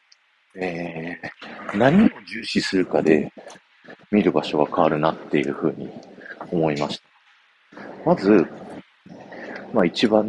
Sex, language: male, Japanese